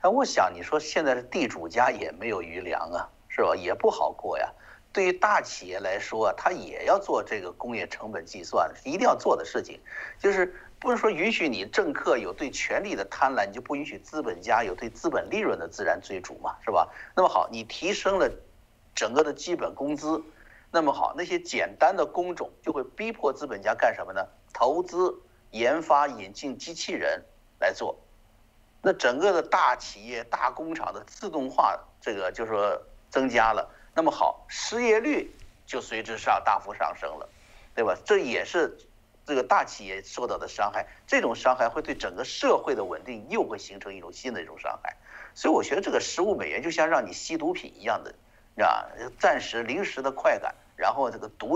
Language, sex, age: Chinese, male, 50-69